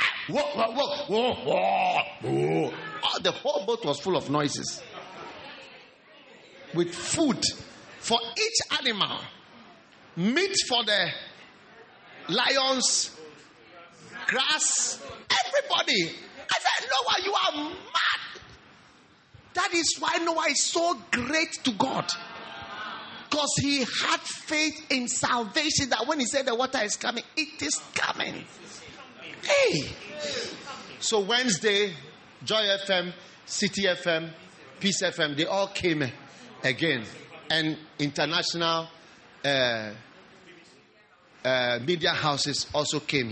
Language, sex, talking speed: English, male, 110 wpm